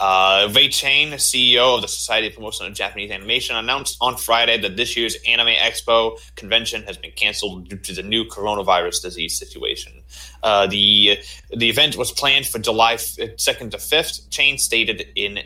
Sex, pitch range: male, 110-145 Hz